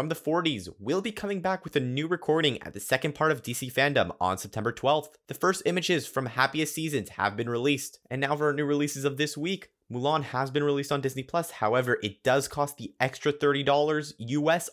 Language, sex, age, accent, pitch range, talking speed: English, male, 30-49, American, 125-160 Hz, 220 wpm